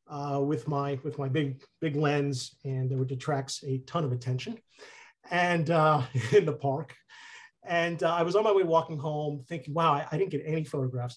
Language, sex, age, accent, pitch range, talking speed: English, male, 40-59, American, 135-160 Hz, 205 wpm